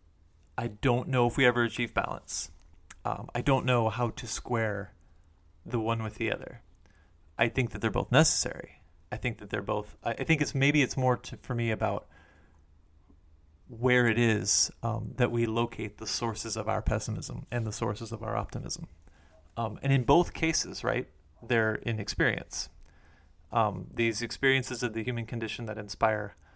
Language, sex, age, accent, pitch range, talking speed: English, male, 30-49, American, 80-120 Hz, 175 wpm